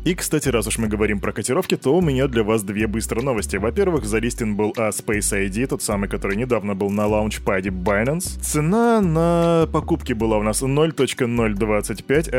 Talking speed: 175 wpm